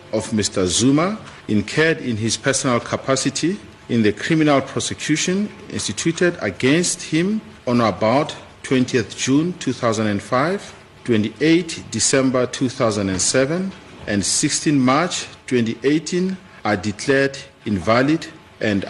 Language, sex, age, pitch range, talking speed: English, male, 50-69, 115-160 Hz, 100 wpm